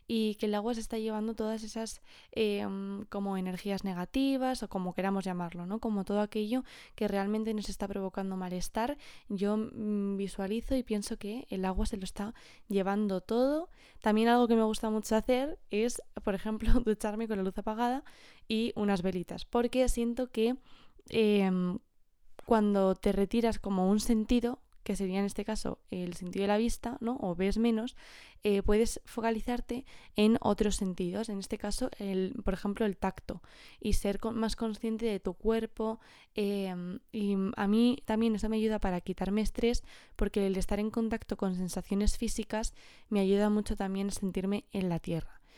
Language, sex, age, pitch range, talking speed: Spanish, female, 20-39, 195-225 Hz, 175 wpm